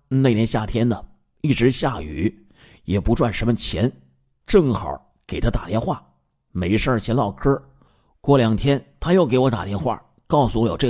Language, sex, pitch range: Chinese, male, 95-135 Hz